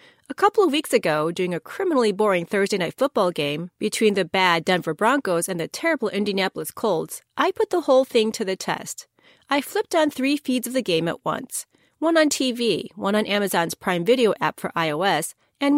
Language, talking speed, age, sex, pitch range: English, 200 wpm, 30-49, female, 195-285 Hz